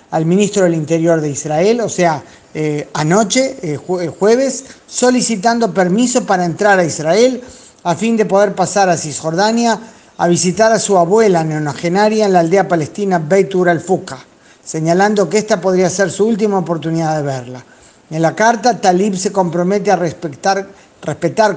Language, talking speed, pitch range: Spanish, 155 wpm, 165-210 Hz